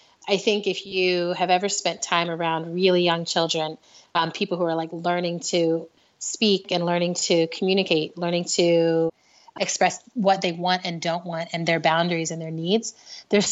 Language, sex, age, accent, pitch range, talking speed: English, female, 30-49, American, 170-205 Hz, 180 wpm